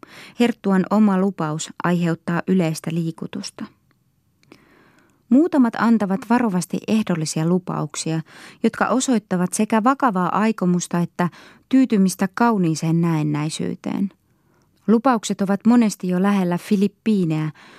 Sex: female